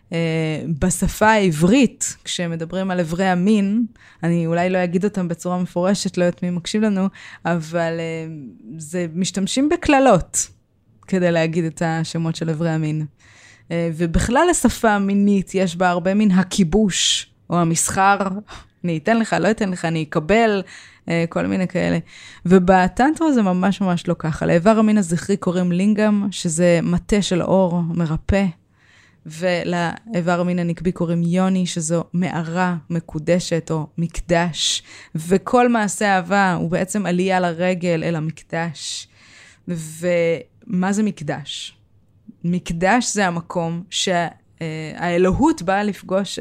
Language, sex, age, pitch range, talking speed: Hebrew, female, 20-39, 165-195 Hz, 125 wpm